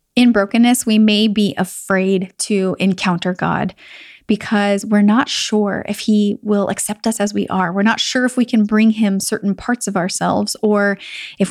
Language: English